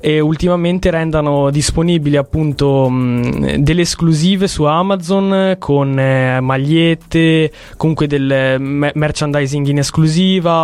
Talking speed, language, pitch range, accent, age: 105 wpm, Italian, 140-170 Hz, native, 20-39